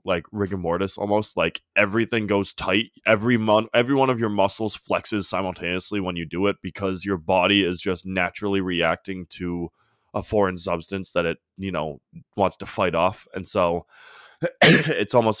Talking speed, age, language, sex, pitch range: 170 wpm, 20-39, English, male, 95-110 Hz